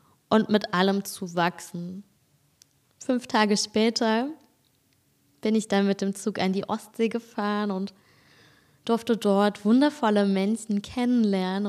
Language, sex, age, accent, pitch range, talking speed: German, female, 20-39, German, 190-220 Hz, 125 wpm